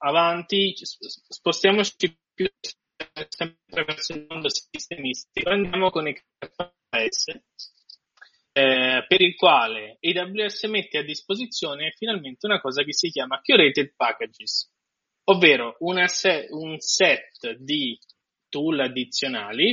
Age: 20-39